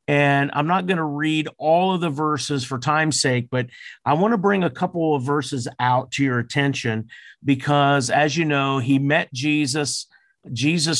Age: 50-69